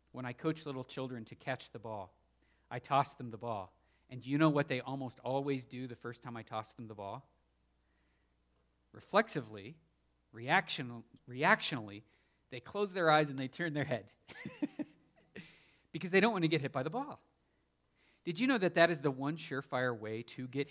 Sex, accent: male, American